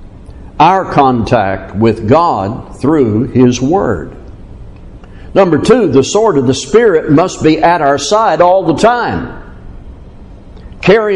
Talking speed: 125 wpm